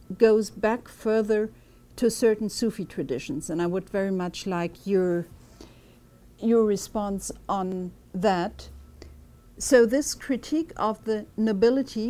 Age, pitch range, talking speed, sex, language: 60-79, 185-235 Hz, 120 wpm, female, English